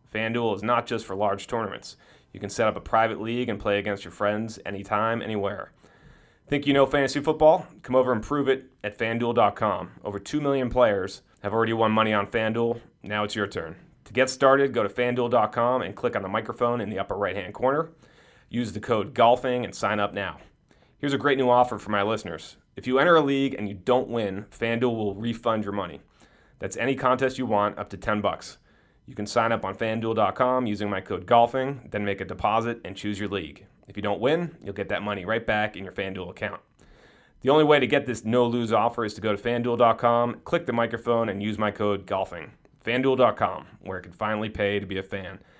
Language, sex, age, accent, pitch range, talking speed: English, male, 30-49, American, 100-125 Hz, 215 wpm